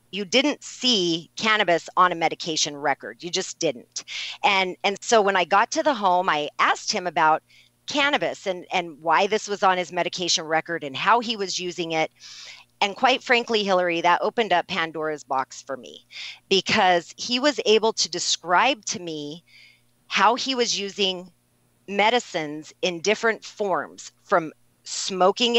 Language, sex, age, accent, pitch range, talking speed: English, female, 40-59, American, 170-220 Hz, 160 wpm